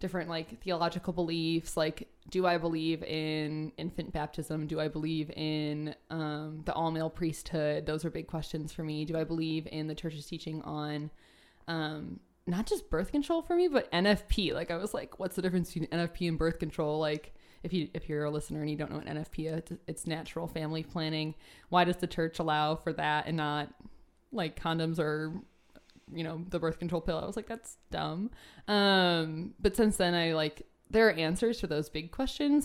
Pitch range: 155-180 Hz